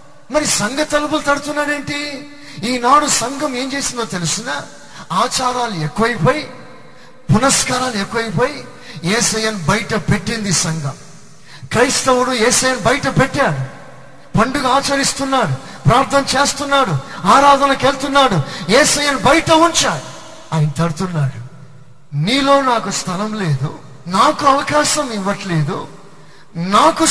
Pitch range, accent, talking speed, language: 150-250 Hz, native, 90 wpm, Telugu